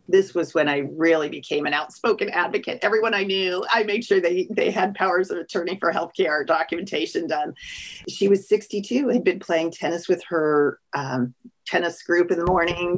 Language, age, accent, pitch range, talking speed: English, 40-59, American, 155-200 Hz, 190 wpm